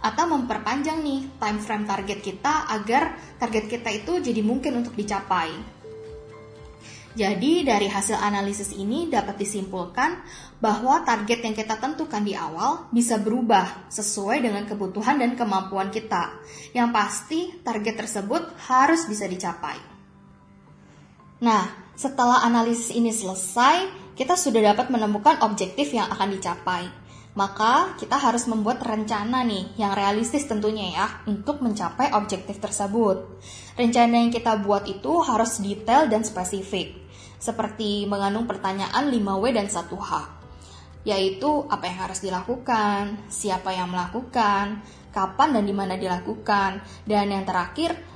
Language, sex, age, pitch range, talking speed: Indonesian, female, 20-39, 195-240 Hz, 125 wpm